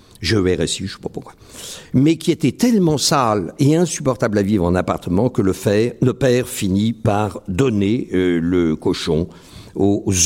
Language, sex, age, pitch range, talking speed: French, male, 60-79, 95-145 Hz, 185 wpm